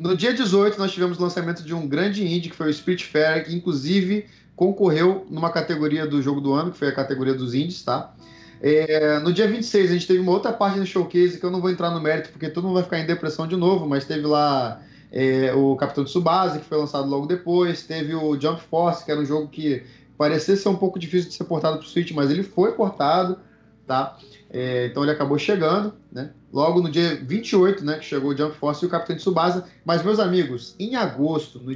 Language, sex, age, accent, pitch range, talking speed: Portuguese, male, 20-39, Brazilian, 150-185 Hz, 235 wpm